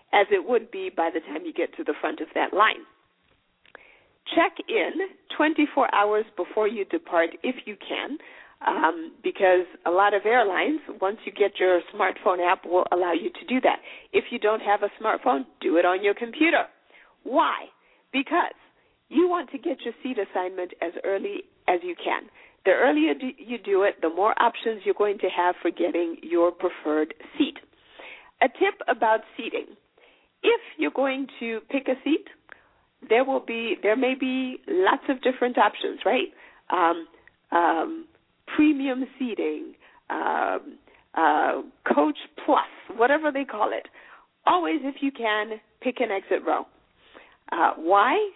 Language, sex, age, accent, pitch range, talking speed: English, female, 50-69, American, 195-325 Hz, 160 wpm